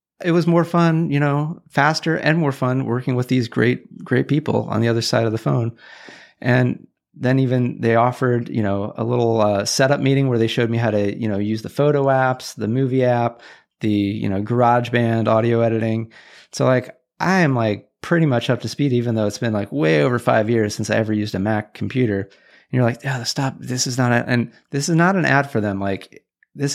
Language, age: English, 30-49